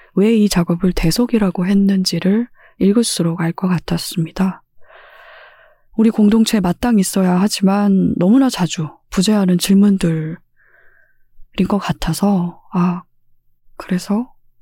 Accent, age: native, 20-39